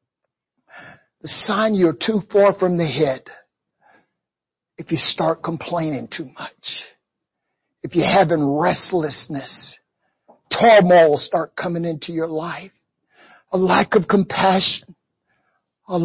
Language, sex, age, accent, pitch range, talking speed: English, male, 60-79, American, 165-205 Hz, 110 wpm